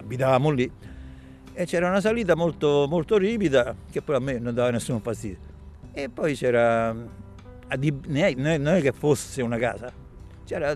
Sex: male